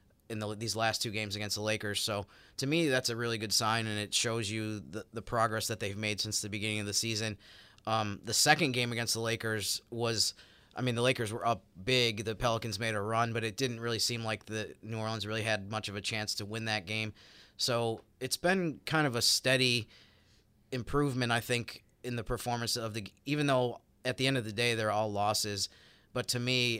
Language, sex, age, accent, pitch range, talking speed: English, male, 30-49, American, 105-120 Hz, 225 wpm